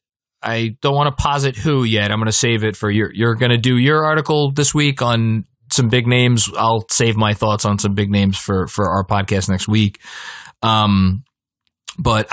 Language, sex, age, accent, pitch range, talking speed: English, male, 20-39, American, 105-130 Hz, 205 wpm